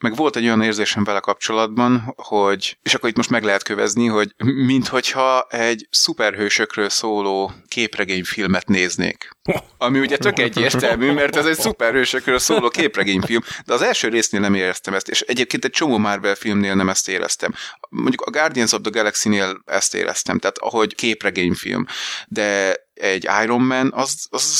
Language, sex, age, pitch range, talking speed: Hungarian, male, 30-49, 100-130 Hz, 160 wpm